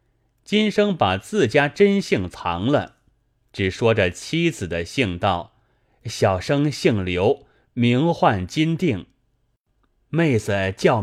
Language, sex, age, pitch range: Chinese, male, 30-49, 100-140 Hz